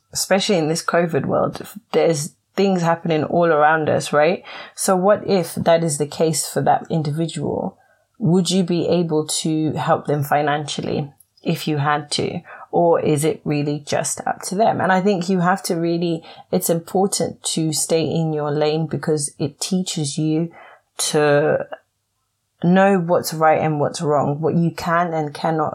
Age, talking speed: 30-49, 170 wpm